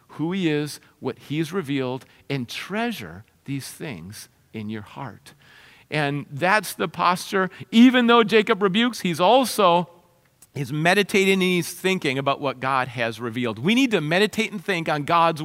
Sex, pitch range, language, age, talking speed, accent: male, 155-210 Hz, English, 50-69, 160 wpm, American